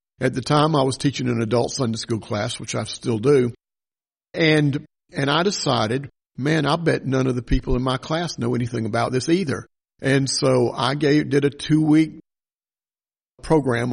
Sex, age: male, 50-69